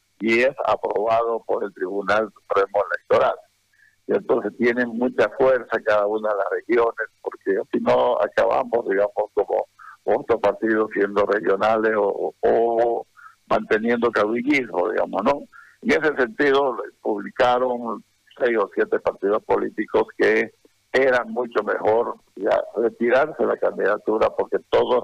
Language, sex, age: Spanish, male, 60-79